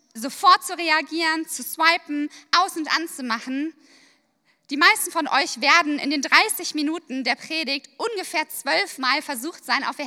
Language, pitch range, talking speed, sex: German, 265-335 Hz, 150 wpm, female